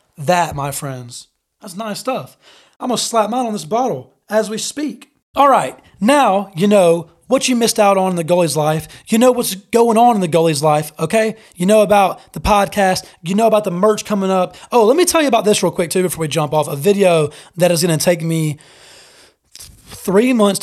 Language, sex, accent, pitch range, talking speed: English, male, American, 155-200 Hz, 225 wpm